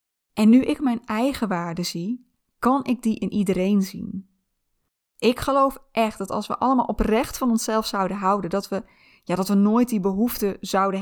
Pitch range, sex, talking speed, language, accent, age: 190-240 Hz, female, 185 wpm, Dutch, Dutch, 20-39